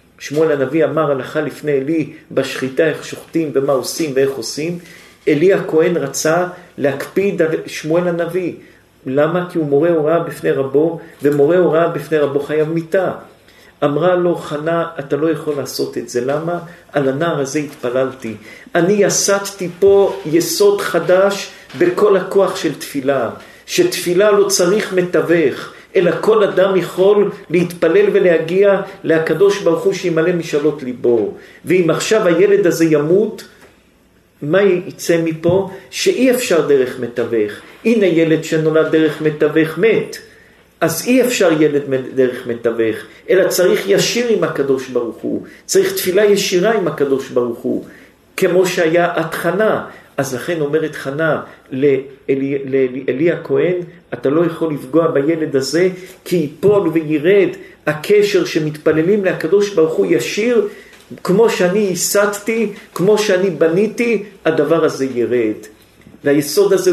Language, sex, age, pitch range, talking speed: Hebrew, male, 50-69, 150-195 Hz, 135 wpm